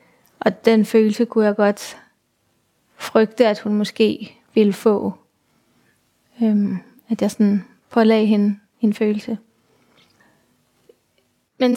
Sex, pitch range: female, 210-240 Hz